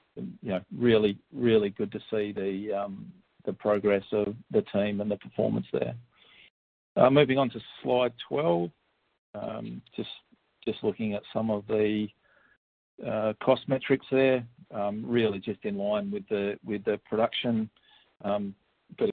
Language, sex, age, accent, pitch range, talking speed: English, male, 50-69, Australian, 100-115 Hz, 155 wpm